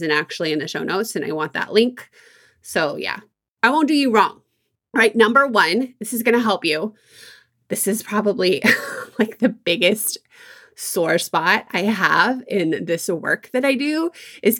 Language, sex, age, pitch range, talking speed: English, female, 20-39, 175-235 Hz, 175 wpm